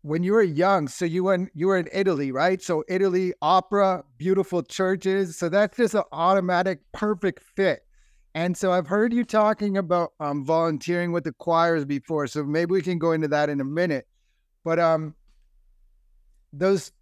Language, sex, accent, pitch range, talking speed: English, male, American, 150-190 Hz, 175 wpm